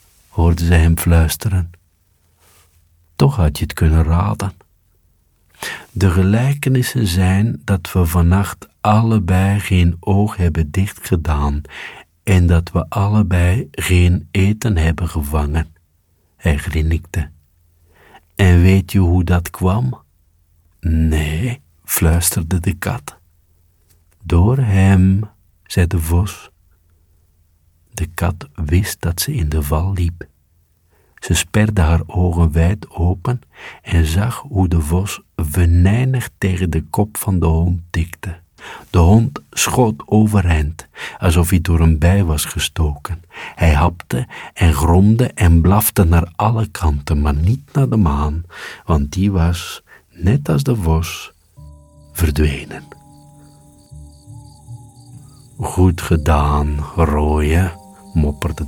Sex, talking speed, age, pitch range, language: male, 115 wpm, 60-79, 80-100 Hz, Dutch